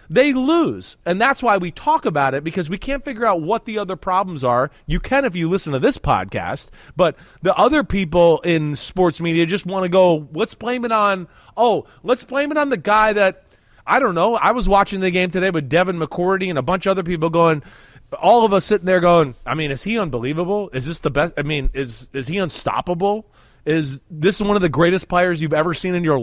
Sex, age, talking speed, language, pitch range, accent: male, 30-49, 235 wpm, English, 160-230 Hz, American